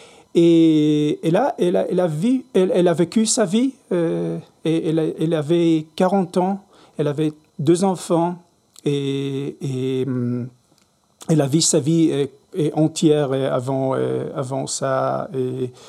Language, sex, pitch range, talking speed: French, male, 145-190 Hz, 150 wpm